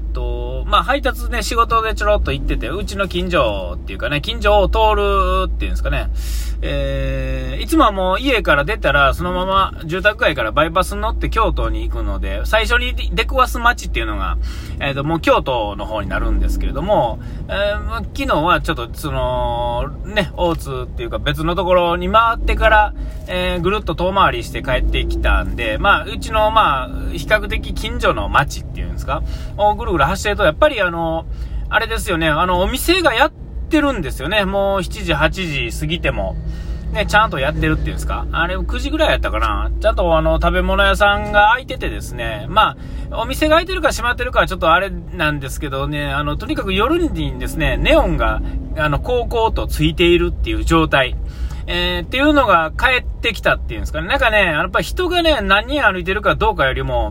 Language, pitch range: Japanese, 155-225 Hz